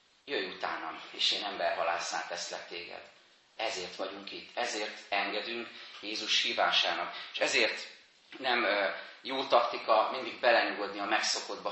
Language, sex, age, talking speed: Hungarian, male, 30-49, 120 wpm